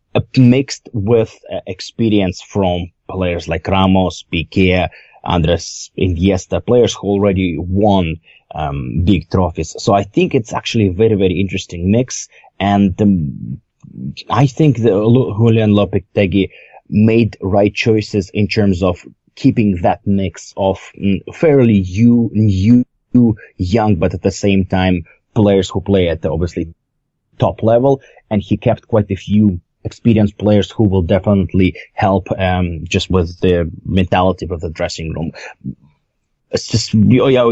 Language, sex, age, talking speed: English, male, 30-49, 140 wpm